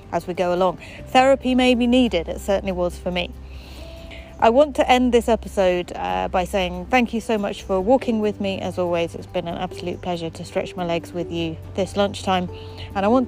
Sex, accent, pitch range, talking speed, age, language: female, British, 180-220 Hz, 215 wpm, 30-49, English